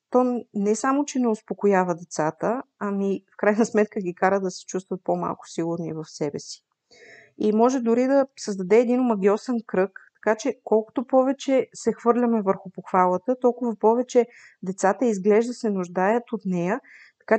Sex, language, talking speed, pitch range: female, Bulgarian, 155 wpm, 185-245 Hz